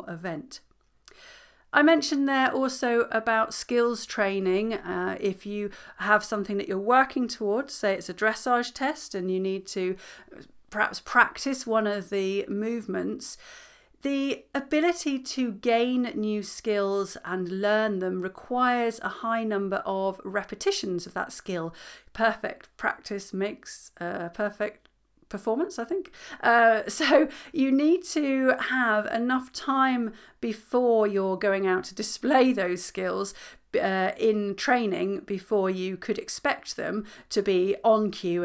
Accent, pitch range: British, 190-255 Hz